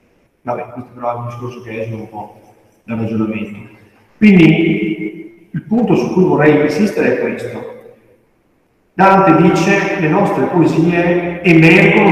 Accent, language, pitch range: native, Italian, 120-160 Hz